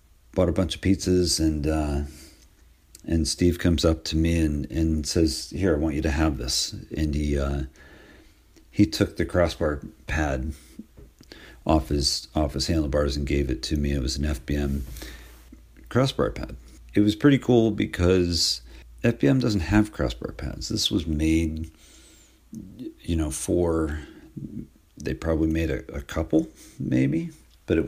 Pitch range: 75-85 Hz